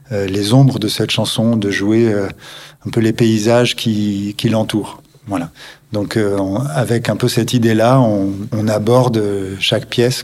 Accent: French